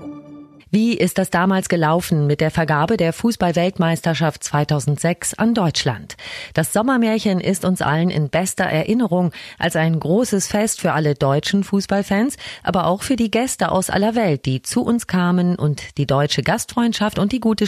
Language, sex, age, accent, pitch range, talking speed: German, female, 30-49, German, 150-195 Hz, 165 wpm